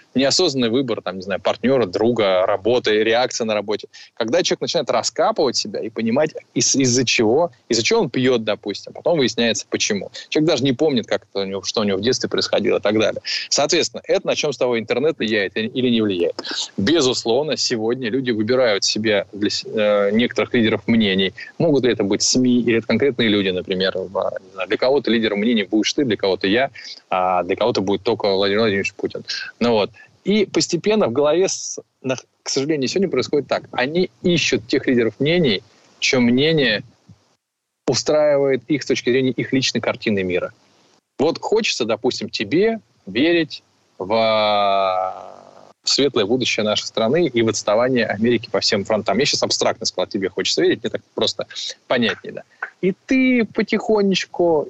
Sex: male